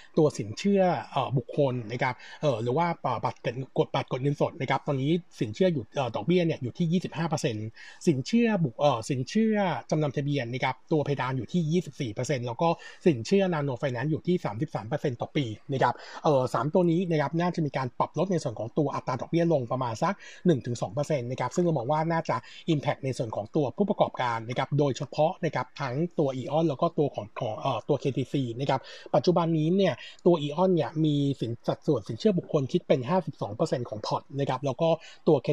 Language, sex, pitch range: Thai, male, 135-170 Hz